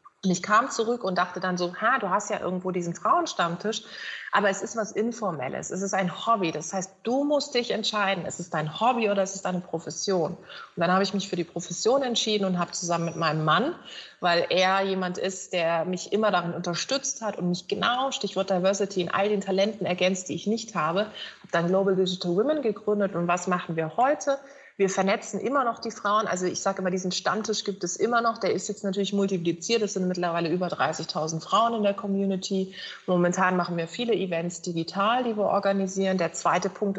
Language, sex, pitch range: German, female, 175-210 Hz